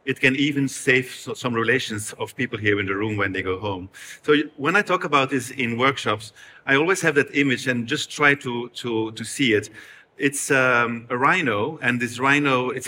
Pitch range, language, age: 115-145 Hz, English, 40-59